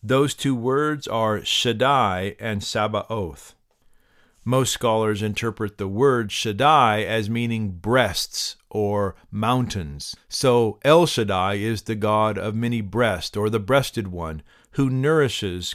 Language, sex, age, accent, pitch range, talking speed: English, male, 50-69, American, 105-130 Hz, 125 wpm